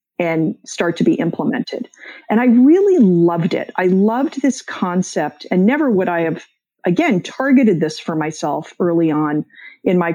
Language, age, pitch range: English, 40-59, 180-250 Hz